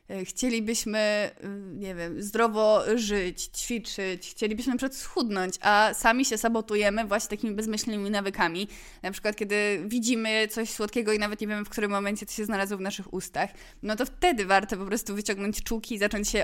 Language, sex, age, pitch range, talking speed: Polish, female, 20-39, 200-240 Hz, 170 wpm